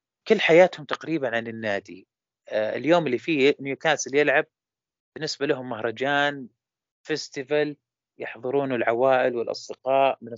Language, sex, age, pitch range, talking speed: Arabic, male, 30-49, 130-170 Hz, 105 wpm